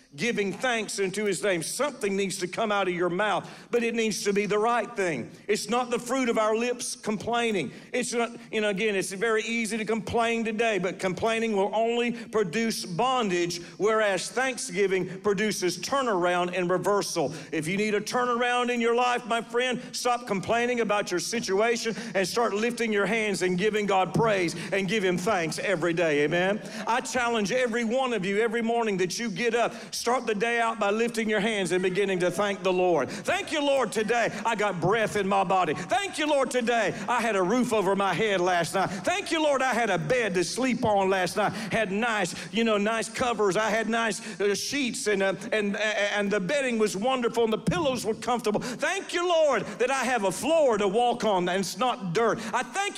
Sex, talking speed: male, 210 wpm